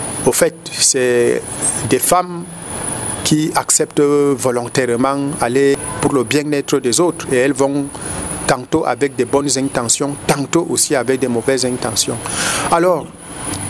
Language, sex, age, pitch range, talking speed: French, male, 50-69, 130-155 Hz, 125 wpm